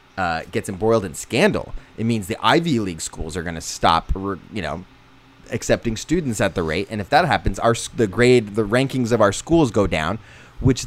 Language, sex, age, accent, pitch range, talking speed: English, male, 30-49, American, 105-150 Hz, 205 wpm